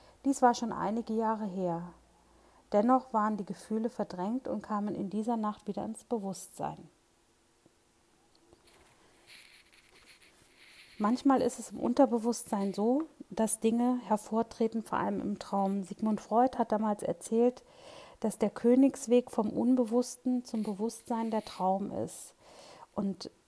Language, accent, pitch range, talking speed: German, German, 200-235 Hz, 125 wpm